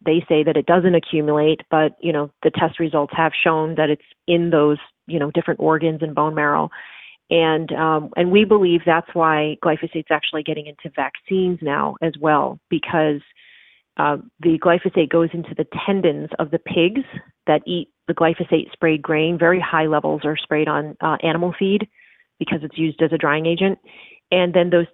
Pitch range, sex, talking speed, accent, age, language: 155-170 Hz, female, 185 wpm, American, 30-49, English